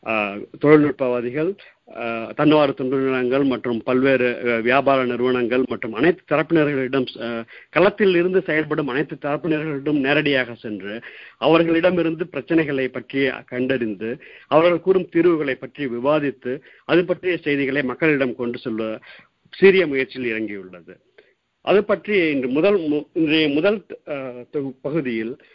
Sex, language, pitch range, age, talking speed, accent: male, Tamil, 125-155 Hz, 50-69, 100 wpm, native